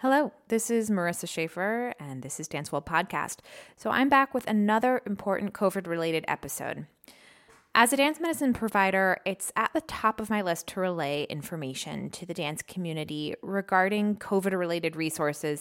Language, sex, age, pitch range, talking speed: English, female, 20-39, 165-210 Hz, 160 wpm